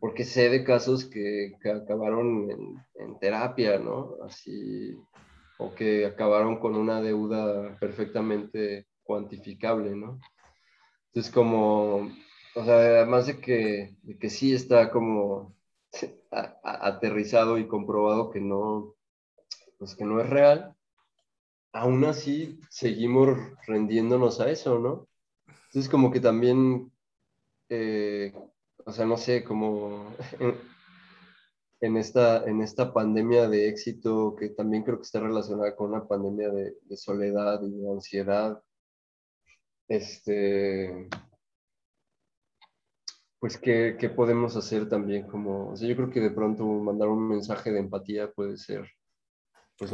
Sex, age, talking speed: male, 20-39, 125 wpm